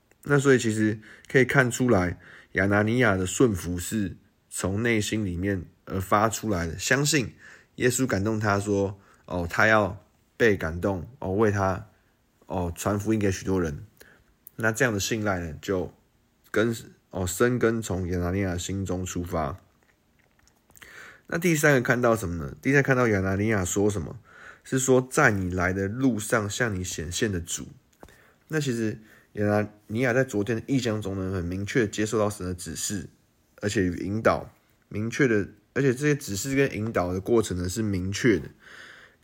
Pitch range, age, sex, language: 90-115 Hz, 20-39, male, Chinese